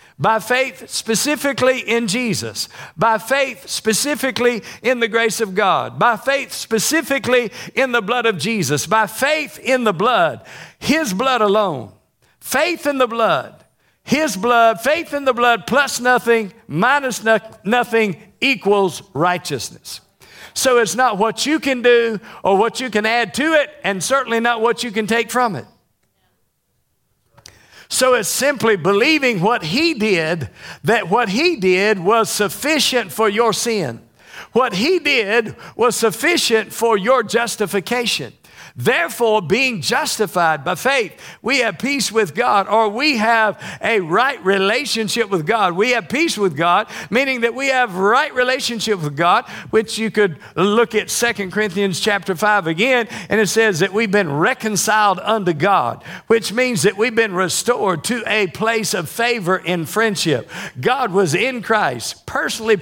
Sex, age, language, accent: male, 50-69, English, American